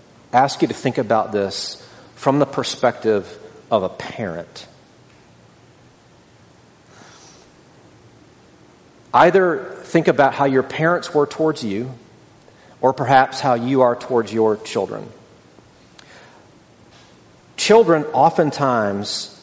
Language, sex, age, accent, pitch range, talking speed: English, male, 40-59, American, 115-150 Hz, 95 wpm